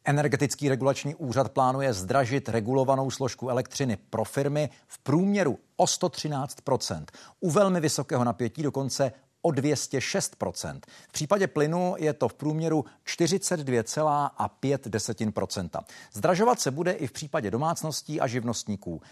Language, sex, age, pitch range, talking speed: Czech, male, 50-69, 120-155 Hz, 120 wpm